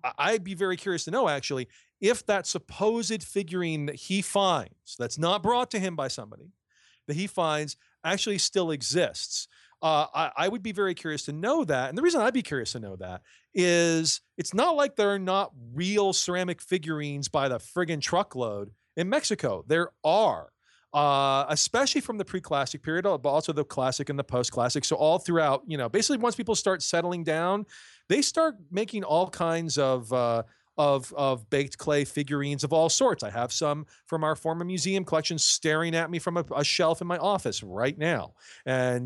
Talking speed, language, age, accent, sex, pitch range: 190 wpm, English, 40-59, American, male, 140-190 Hz